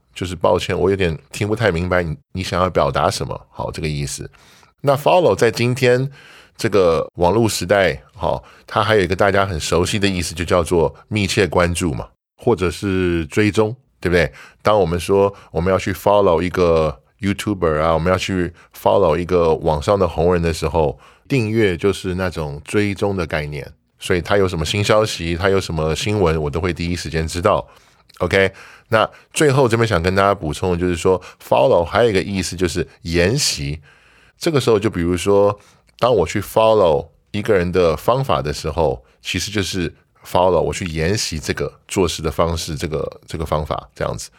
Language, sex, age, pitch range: Chinese, male, 10-29, 85-105 Hz